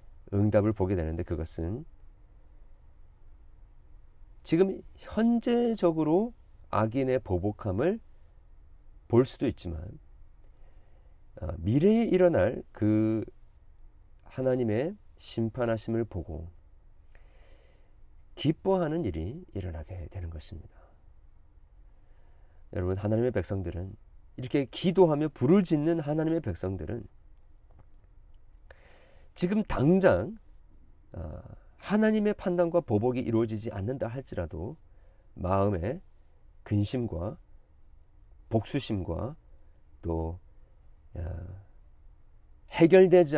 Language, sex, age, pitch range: Korean, male, 40-59, 80-130 Hz